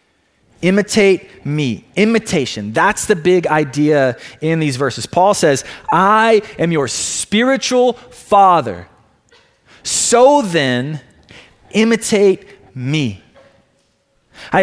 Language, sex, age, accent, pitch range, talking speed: English, male, 20-39, American, 130-195 Hz, 90 wpm